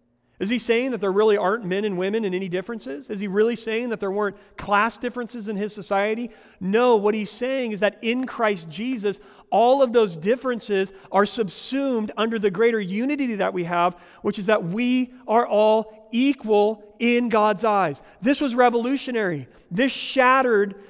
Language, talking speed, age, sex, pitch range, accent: English, 180 wpm, 40-59, male, 195-230 Hz, American